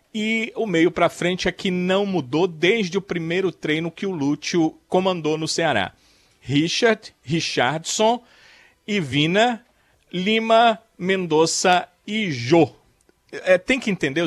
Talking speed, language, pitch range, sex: 125 wpm, Portuguese, 140-185 Hz, male